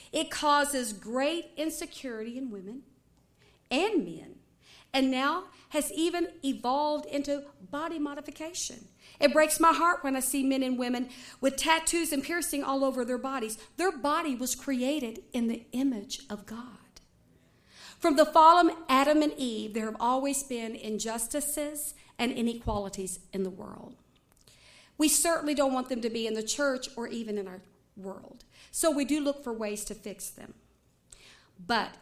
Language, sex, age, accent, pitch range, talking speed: English, female, 50-69, American, 230-305 Hz, 160 wpm